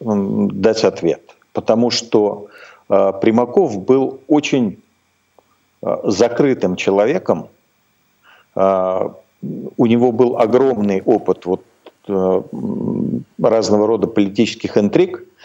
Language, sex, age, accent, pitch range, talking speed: Russian, male, 50-69, native, 100-125 Hz, 90 wpm